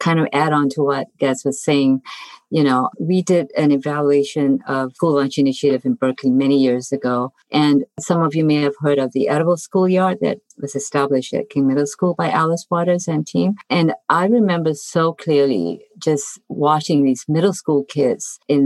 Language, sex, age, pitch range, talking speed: English, female, 50-69, 140-175 Hz, 190 wpm